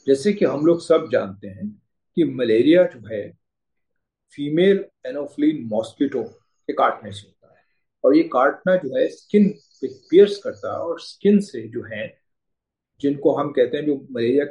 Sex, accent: male, native